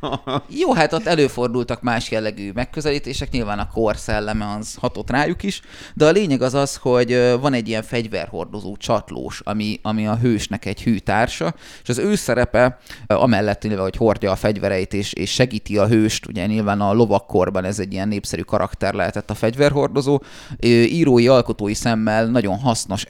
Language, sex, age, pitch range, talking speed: Hungarian, male, 30-49, 105-125 Hz, 160 wpm